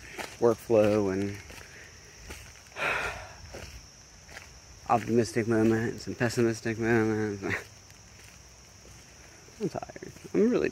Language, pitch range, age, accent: English, 100-120 Hz, 20-39, American